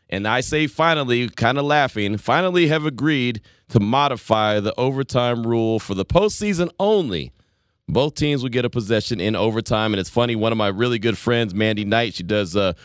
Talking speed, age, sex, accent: 190 wpm, 30-49, male, American